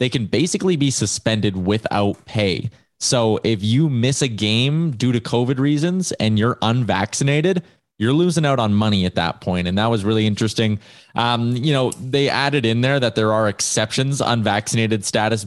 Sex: male